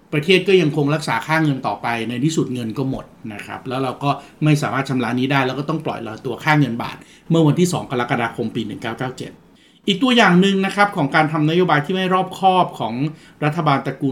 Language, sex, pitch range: Thai, male, 130-170 Hz